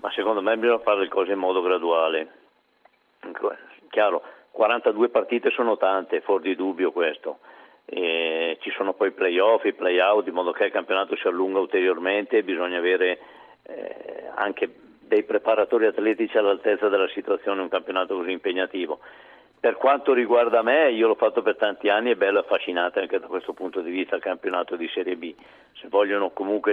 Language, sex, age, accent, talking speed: Italian, male, 50-69, native, 175 wpm